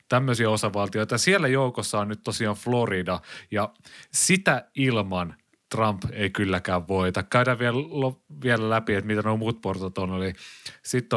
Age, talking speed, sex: 30-49, 135 wpm, male